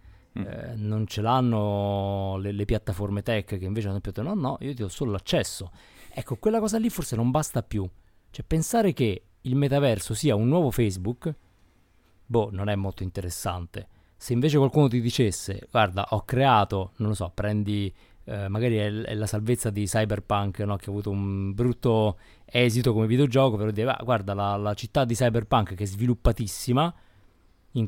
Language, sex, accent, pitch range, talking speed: Italian, male, native, 100-125 Hz, 180 wpm